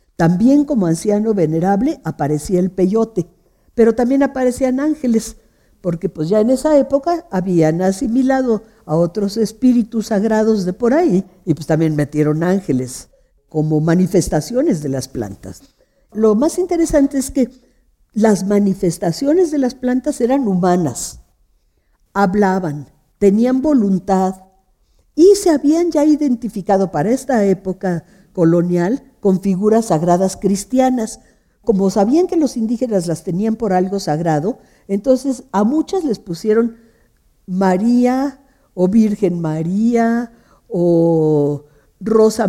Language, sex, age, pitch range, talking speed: Spanish, female, 50-69, 170-240 Hz, 120 wpm